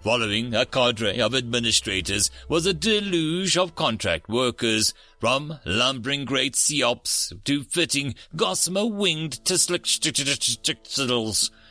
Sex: male